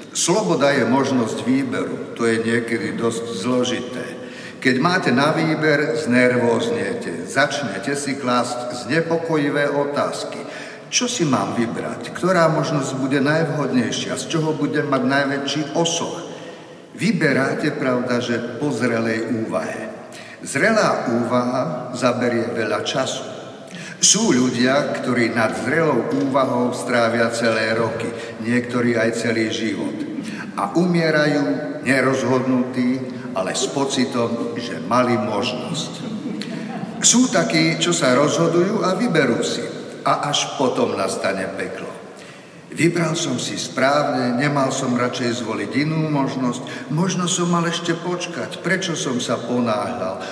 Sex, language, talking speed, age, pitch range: male, Slovak, 120 wpm, 50-69, 120-160 Hz